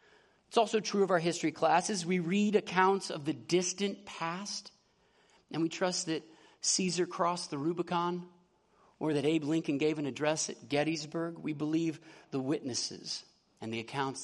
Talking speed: 160 wpm